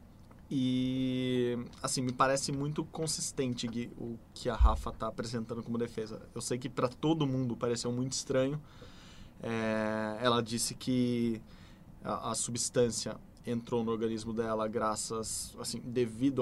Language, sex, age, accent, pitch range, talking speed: Portuguese, male, 20-39, Brazilian, 110-125 Hz, 130 wpm